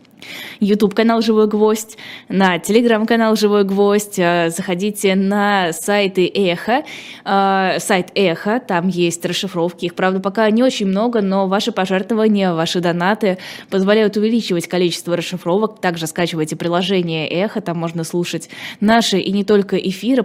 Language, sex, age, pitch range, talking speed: Russian, female, 20-39, 175-215 Hz, 130 wpm